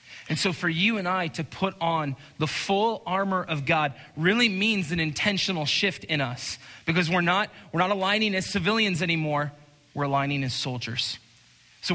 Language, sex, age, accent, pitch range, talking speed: English, male, 20-39, American, 125-175 Hz, 175 wpm